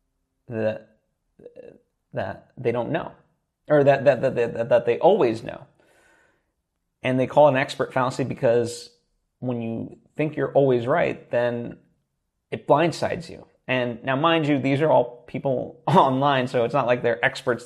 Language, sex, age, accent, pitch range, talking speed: English, male, 30-49, American, 115-140 Hz, 165 wpm